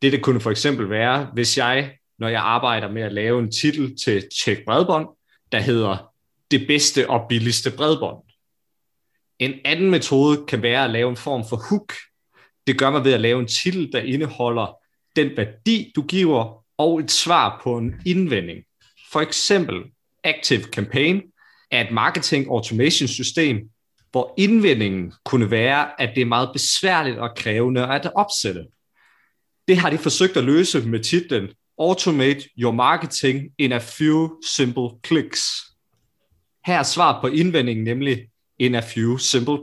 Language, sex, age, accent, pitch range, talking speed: Danish, male, 30-49, native, 115-150 Hz, 155 wpm